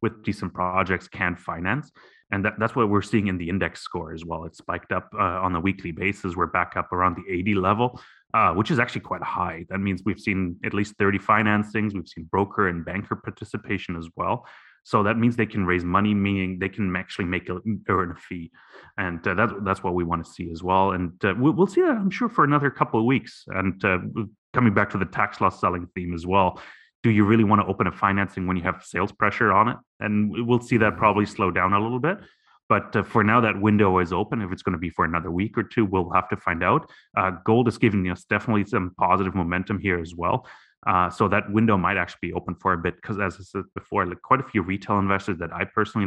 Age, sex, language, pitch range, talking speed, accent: 30-49, male, English, 90-105 Hz, 245 wpm, Canadian